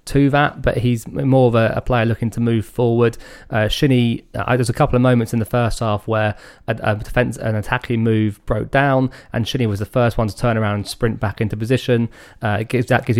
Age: 20-39